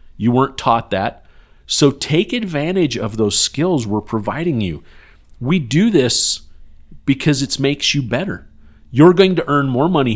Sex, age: male, 40-59